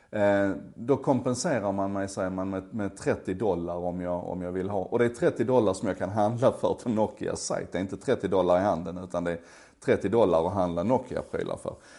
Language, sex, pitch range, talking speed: Swedish, male, 95-125 Hz, 220 wpm